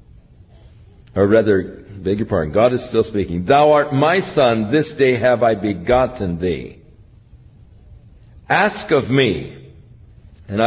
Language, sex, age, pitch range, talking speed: English, male, 60-79, 95-120 Hz, 130 wpm